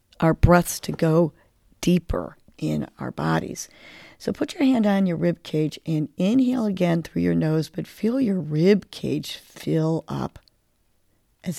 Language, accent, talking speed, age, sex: English, American, 155 wpm, 50-69, female